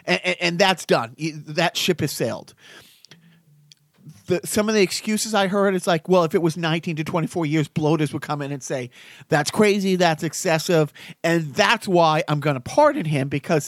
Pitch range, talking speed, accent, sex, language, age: 145-185 Hz, 195 wpm, American, male, English, 40-59